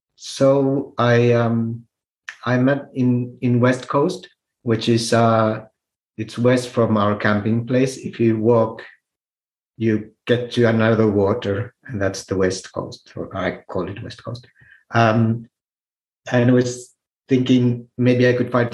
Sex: male